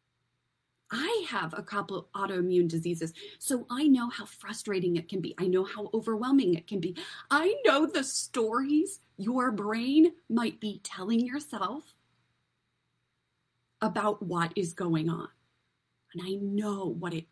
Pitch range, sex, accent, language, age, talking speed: 180-245 Hz, female, American, English, 30-49, 145 wpm